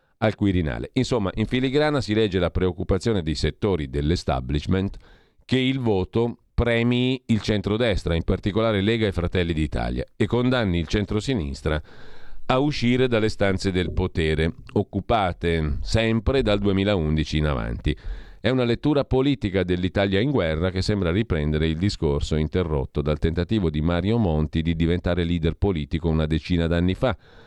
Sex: male